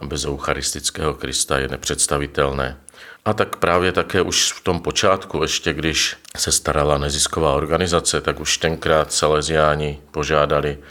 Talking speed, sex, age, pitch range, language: 130 wpm, male, 50-69, 70-80 Hz, Czech